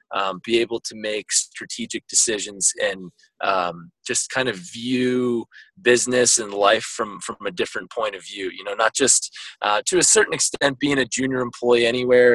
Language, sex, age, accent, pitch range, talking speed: English, male, 20-39, American, 110-140 Hz, 180 wpm